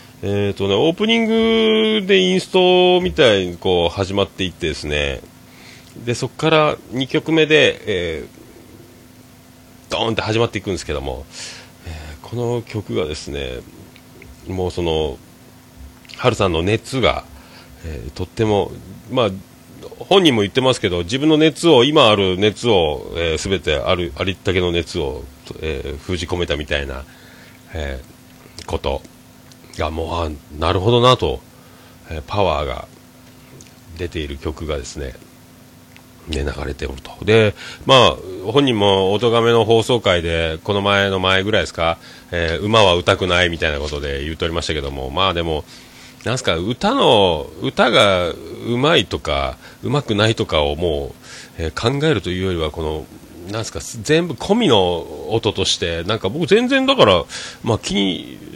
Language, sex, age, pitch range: Japanese, male, 40-59, 85-120 Hz